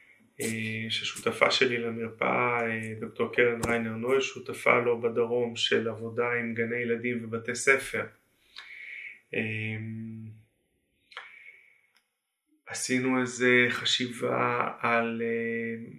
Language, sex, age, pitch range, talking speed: Hebrew, male, 20-39, 115-125 Hz, 80 wpm